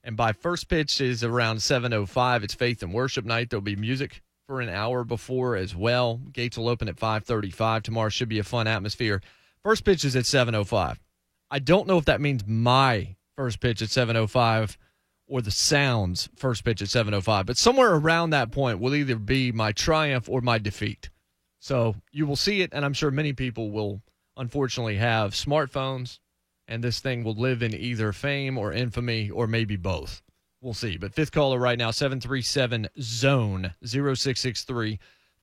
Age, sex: 30-49, male